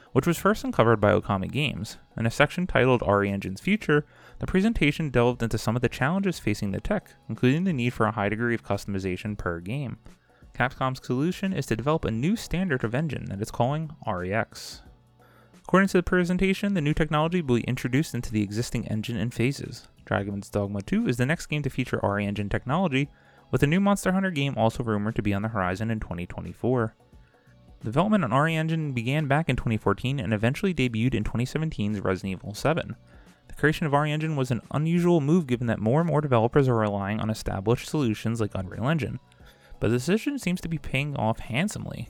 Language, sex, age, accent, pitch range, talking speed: English, male, 30-49, American, 110-160 Hz, 200 wpm